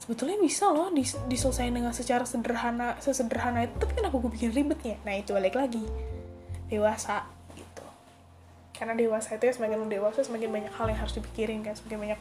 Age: 10-29